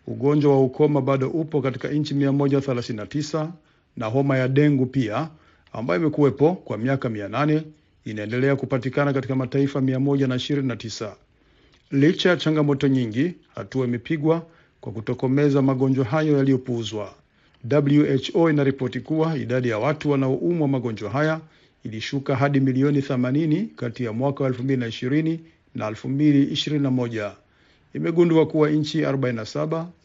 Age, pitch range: 50-69, 125-150 Hz